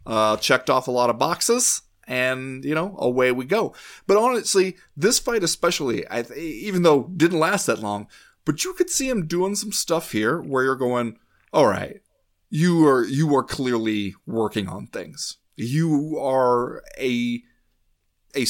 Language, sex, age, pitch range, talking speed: English, male, 20-39, 115-170 Hz, 170 wpm